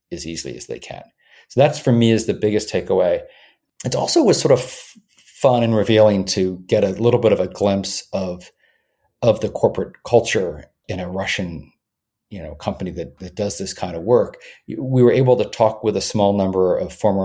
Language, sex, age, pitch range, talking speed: English, male, 40-59, 100-125 Hz, 200 wpm